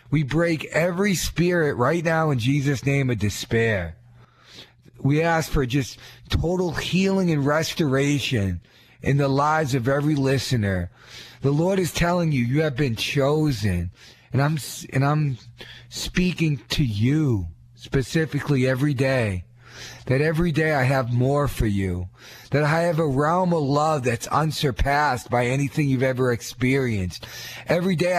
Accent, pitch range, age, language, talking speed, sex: American, 120-160 Hz, 40-59, English, 145 wpm, male